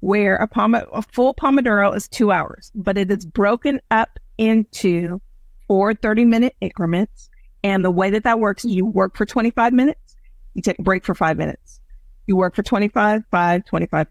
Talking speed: 185 wpm